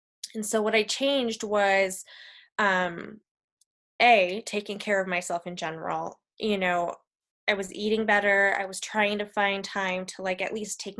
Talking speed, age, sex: 170 wpm, 20-39, female